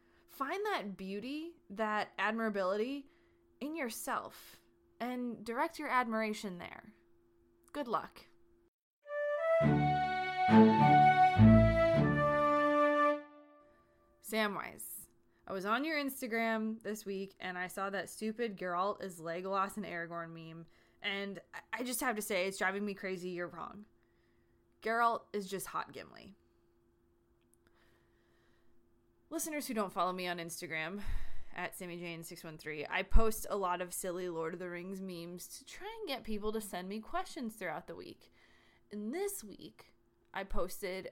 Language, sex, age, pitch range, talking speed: English, female, 20-39, 160-230 Hz, 135 wpm